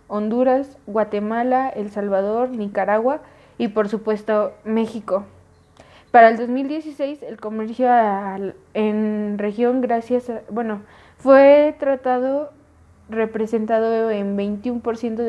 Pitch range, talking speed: 210-250 Hz, 95 wpm